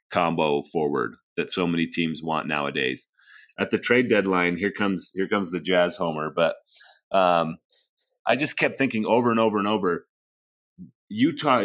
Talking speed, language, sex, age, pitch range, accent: 160 wpm, English, male, 30-49, 90-110 Hz, American